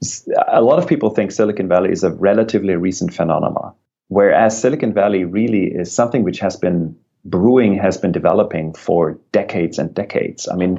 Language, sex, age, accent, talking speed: English, male, 30-49, German, 170 wpm